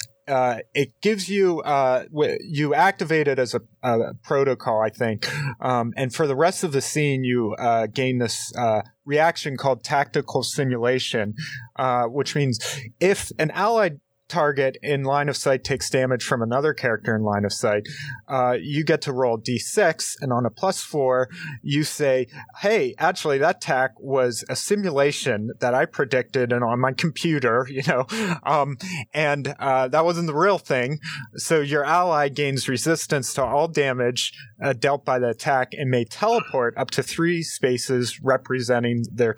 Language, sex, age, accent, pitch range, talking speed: English, male, 30-49, American, 120-150 Hz, 170 wpm